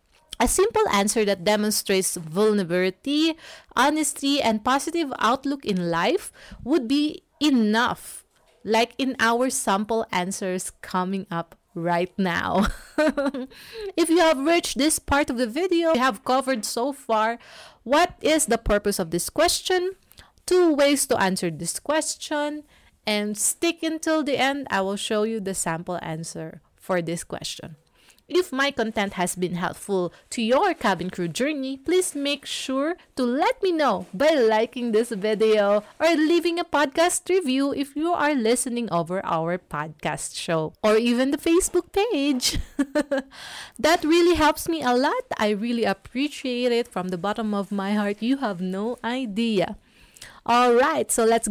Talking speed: 150 wpm